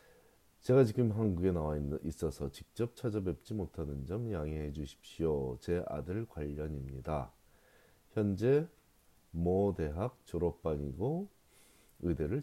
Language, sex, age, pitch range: Korean, male, 40-59, 75-105 Hz